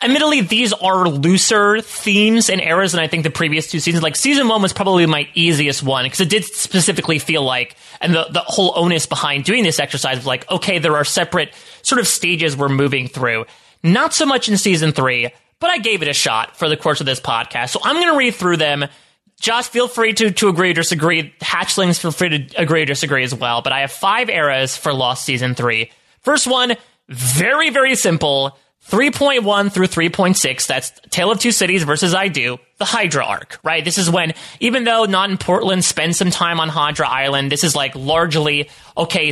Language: English